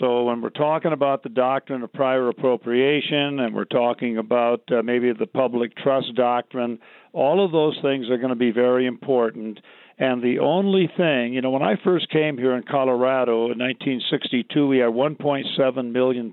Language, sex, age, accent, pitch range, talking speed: English, male, 50-69, American, 120-140 Hz, 180 wpm